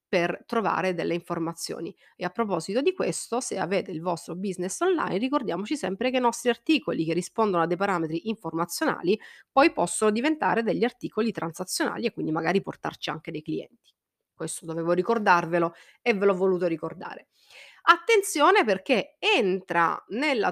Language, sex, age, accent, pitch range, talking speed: Italian, female, 30-49, native, 180-245 Hz, 150 wpm